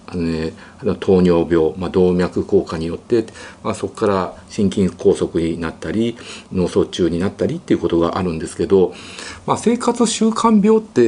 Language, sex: Japanese, male